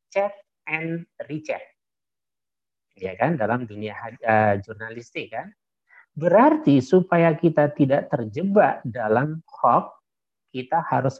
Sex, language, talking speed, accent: male, Indonesian, 100 wpm, native